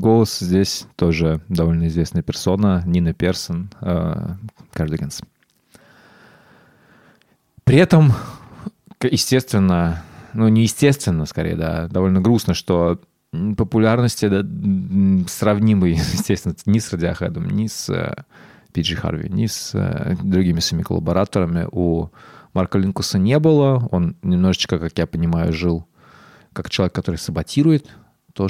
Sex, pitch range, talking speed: male, 90-115 Hz, 110 wpm